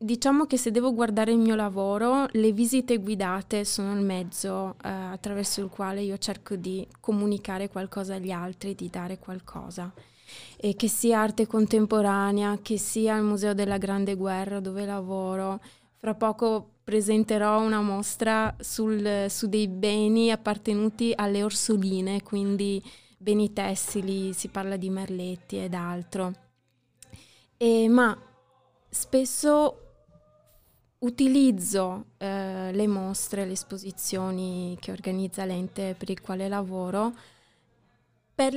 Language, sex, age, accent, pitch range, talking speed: Italian, female, 20-39, native, 195-225 Hz, 125 wpm